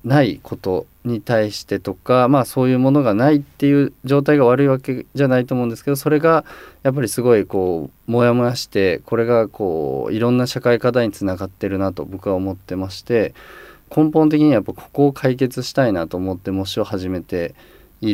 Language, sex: Japanese, male